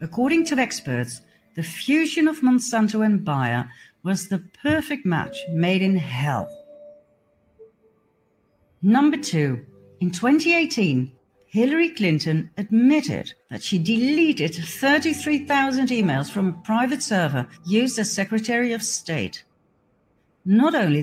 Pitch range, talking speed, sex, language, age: 165-265 Hz, 110 wpm, female, English, 60-79